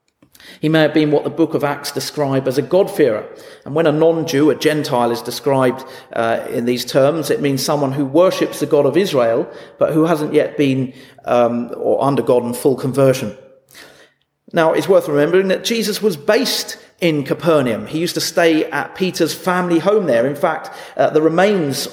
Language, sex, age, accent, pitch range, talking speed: English, male, 40-59, British, 145-180 Hz, 185 wpm